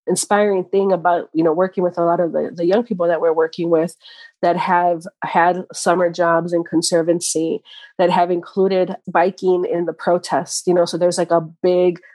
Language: English